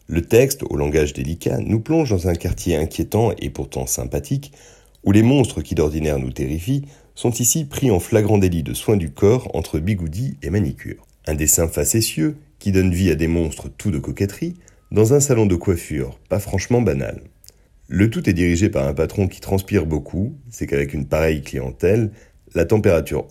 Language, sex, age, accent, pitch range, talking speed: French, male, 40-59, French, 80-110 Hz, 185 wpm